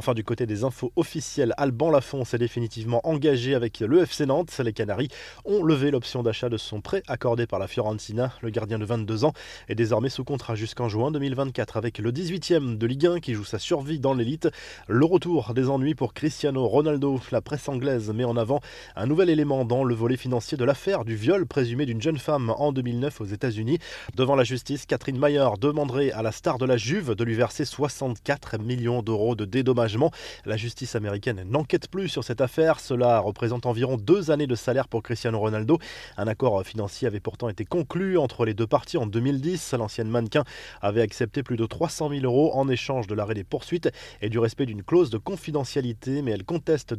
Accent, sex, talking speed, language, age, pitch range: French, male, 205 wpm, French, 20-39, 115-150 Hz